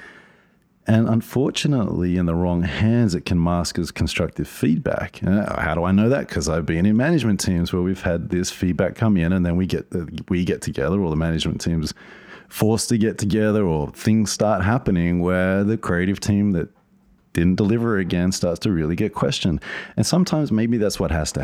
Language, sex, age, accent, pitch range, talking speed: English, male, 30-49, Australian, 80-110 Hz, 195 wpm